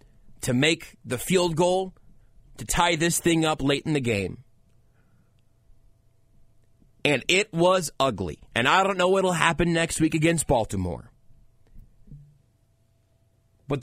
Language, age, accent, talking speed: English, 30-49, American, 130 wpm